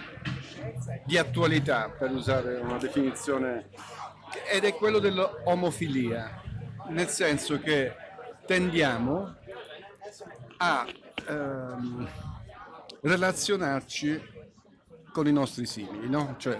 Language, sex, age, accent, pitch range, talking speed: Italian, male, 50-69, native, 125-160 Hz, 85 wpm